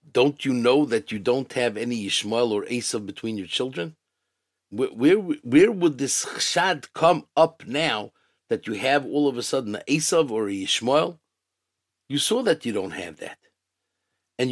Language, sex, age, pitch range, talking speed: English, male, 50-69, 115-160 Hz, 180 wpm